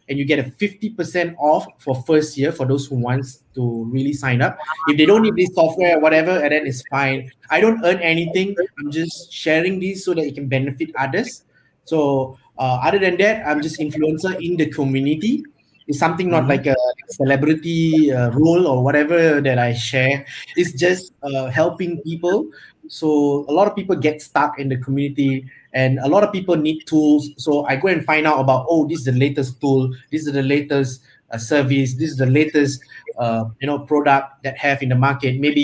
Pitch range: 135-160 Hz